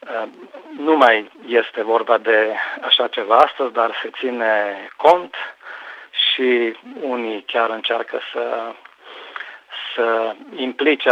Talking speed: 105 wpm